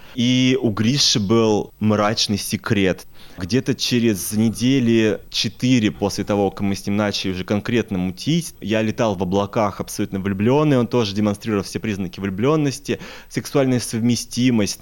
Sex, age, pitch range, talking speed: male, 20-39, 100-125 Hz, 140 wpm